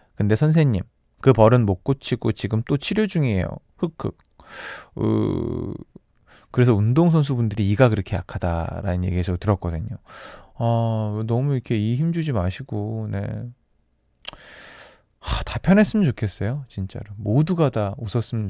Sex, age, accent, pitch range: male, 20-39, native, 100-135 Hz